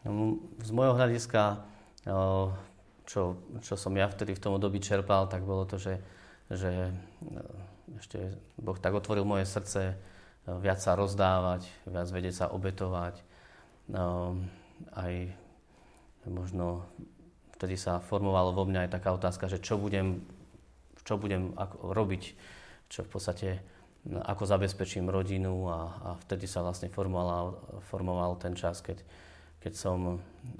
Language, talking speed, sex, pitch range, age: Slovak, 120 wpm, male, 90-100 Hz, 30-49